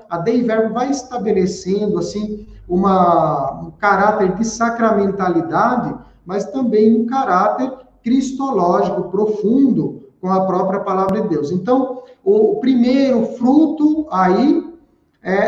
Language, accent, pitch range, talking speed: Portuguese, Brazilian, 185-230 Hz, 105 wpm